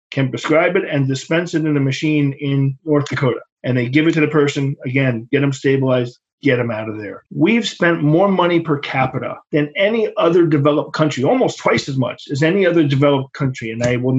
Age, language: 40-59, English